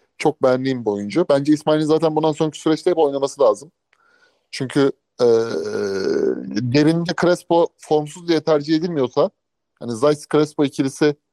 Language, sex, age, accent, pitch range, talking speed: Turkish, male, 30-49, native, 145-195 Hz, 125 wpm